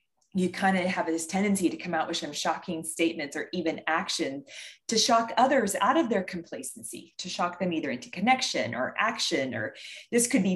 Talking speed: 200 wpm